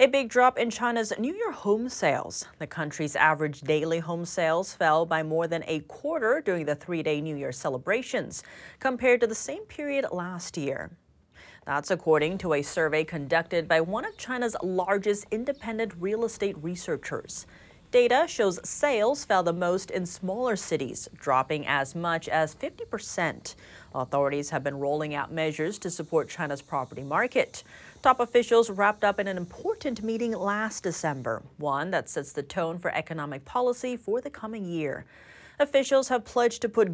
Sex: female